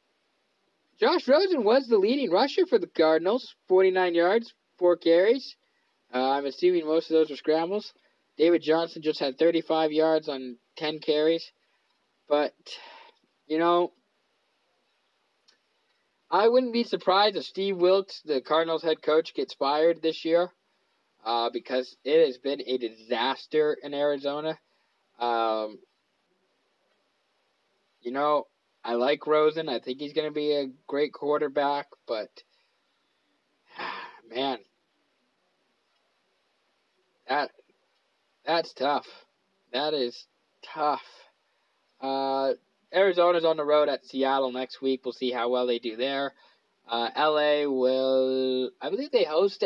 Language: English